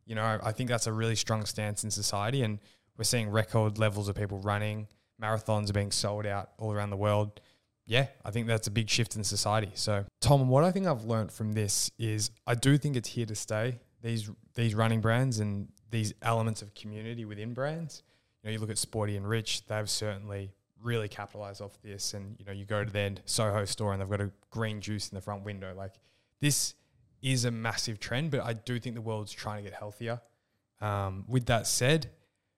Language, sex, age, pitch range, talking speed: English, male, 20-39, 105-120 Hz, 215 wpm